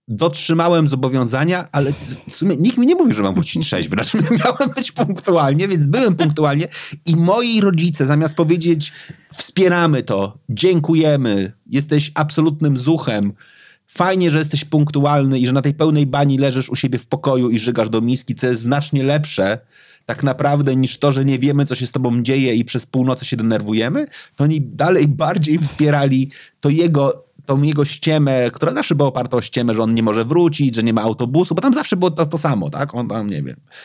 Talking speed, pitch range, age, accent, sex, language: 190 wpm, 120-155 Hz, 30-49, native, male, Polish